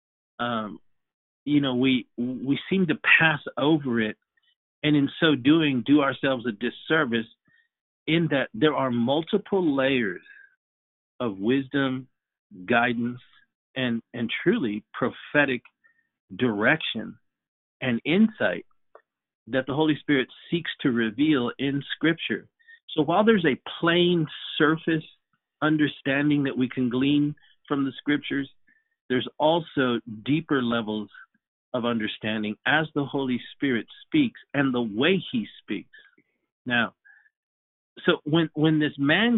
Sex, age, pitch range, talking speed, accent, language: male, 50-69, 125-175 Hz, 120 wpm, American, English